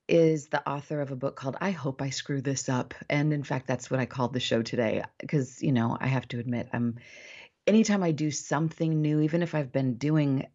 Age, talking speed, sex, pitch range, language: 30-49, 235 wpm, female, 130-155 Hz, English